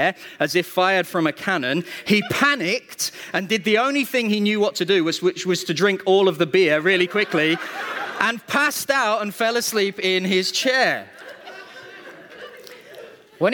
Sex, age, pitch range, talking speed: male, 30-49, 135-190 Hz, 170 wpm